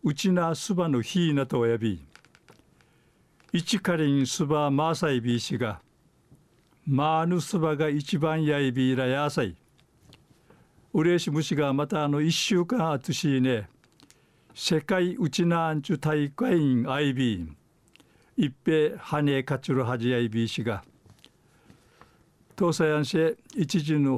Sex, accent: male, native